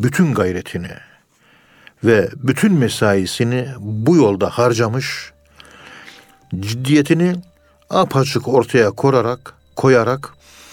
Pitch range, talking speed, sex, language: 105-135 Hz, 75 wpm, male, Turkish